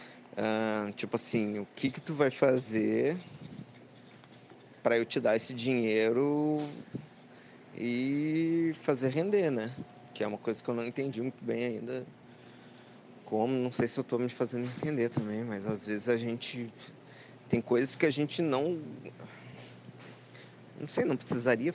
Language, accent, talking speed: Portuguese, Brazilian, 150 wpm